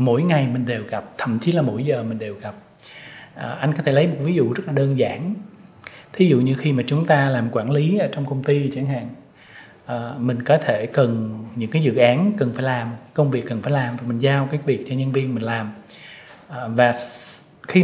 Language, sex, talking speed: Vietnamese, male, 235 wpm